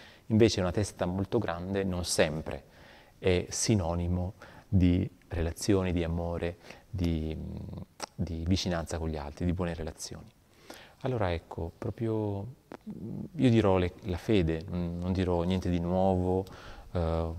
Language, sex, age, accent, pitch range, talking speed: Italian, male, 30-49, native, 85-100 Hz, 120 wpm